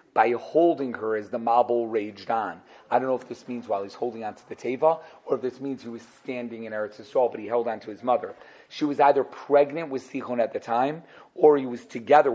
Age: 40-59